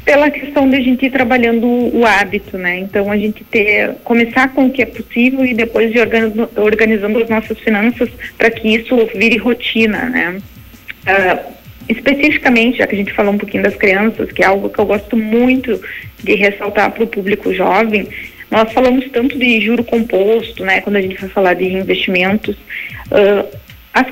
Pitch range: 215-250 Hz